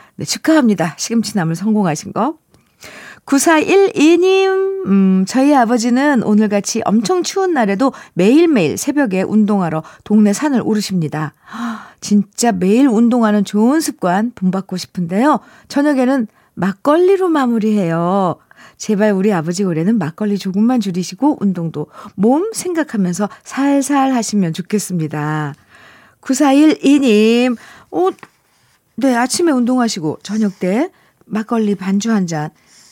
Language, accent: Korean, native